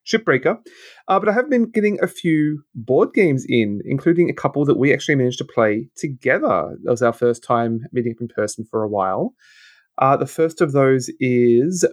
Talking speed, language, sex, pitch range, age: 200 wpm, English, male, 120-145 Hz, 30-49